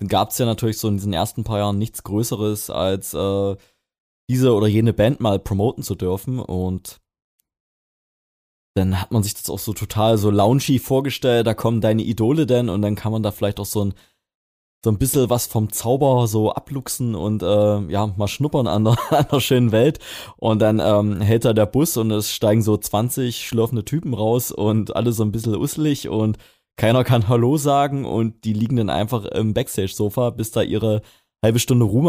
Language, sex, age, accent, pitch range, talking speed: German, male, 20-39, German, 105-120 Hz, 195 wpm